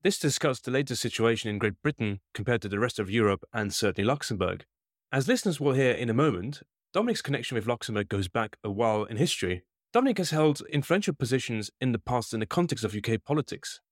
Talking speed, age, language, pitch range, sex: 205 wpm, 30-49, English, 105-140 Hz, male